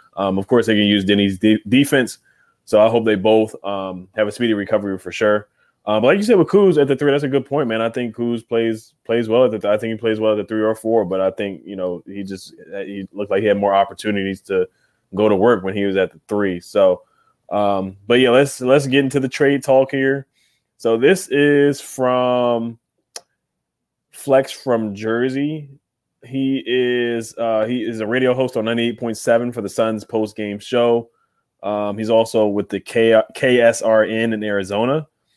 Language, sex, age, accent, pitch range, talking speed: English, male, 20-39, American, 105-125 Hz, 205 wpm